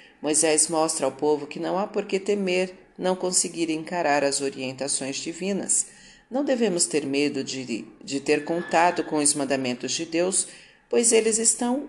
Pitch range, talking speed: 140-185 Hz, 160 wpm